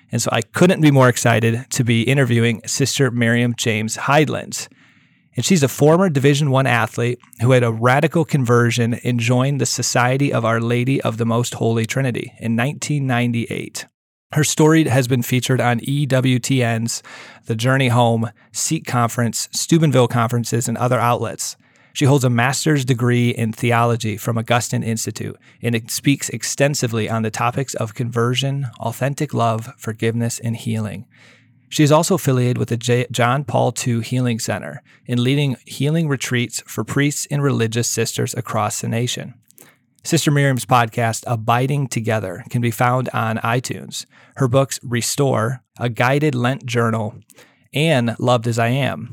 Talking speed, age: 155 wpm, 30-49